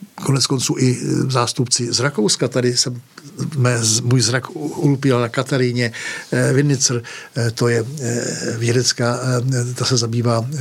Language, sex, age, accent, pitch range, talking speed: Czech, male, 60-79, native, 115-130 Hz, 115 wpm